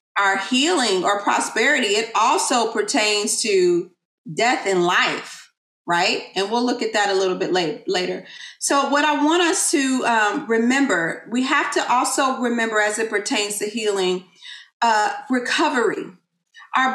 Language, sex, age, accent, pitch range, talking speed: English, female, 40-59, American, 205-270 Hz, 150 wpm